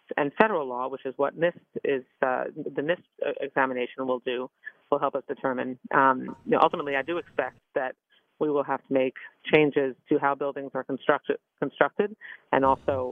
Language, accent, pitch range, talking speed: English, American, 140-180 Hz, 185 wpm